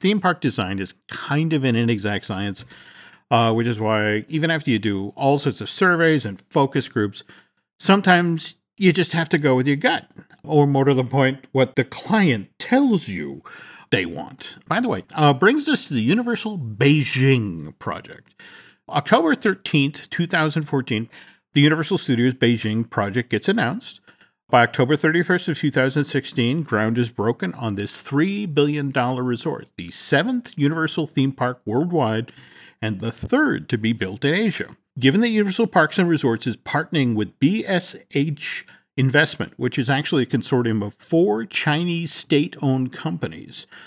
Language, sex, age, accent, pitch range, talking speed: English, male, 50-69, American, 115-165 Hz, 155 wpm